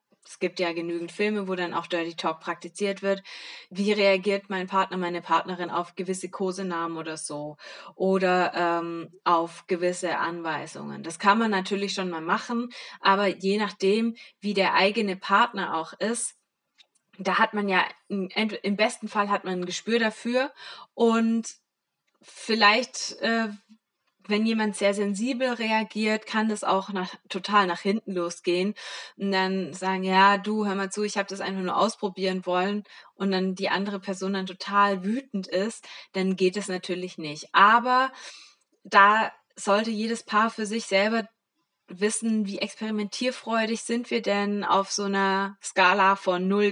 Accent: German